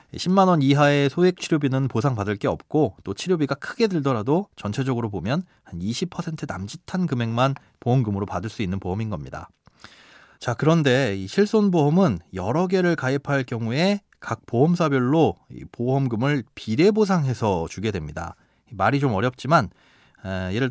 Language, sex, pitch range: Korean, male, 115-160 Hz